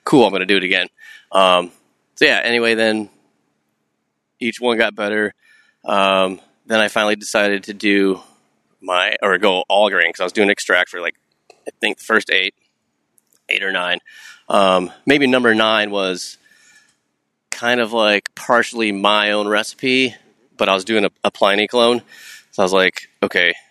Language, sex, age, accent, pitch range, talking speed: English, male, 30-49, American, 95-120 Hz, 170 wpm